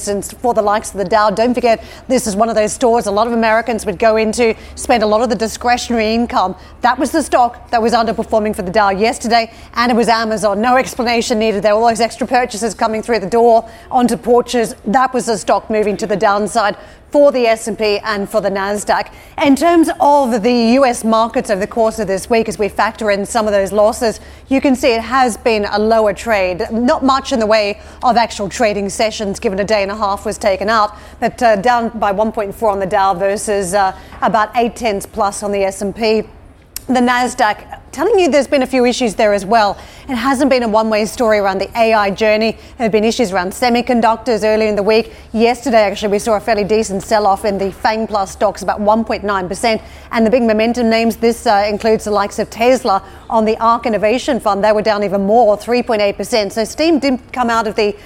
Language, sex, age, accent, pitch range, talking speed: English, female, 30-49, Australian, 210-240 Hz, 220 wpm